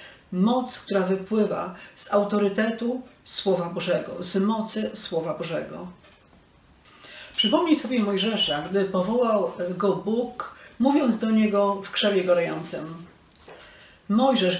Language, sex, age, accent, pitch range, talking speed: Polish, female, 40-59, native, 185-230 Hz, 105 wpm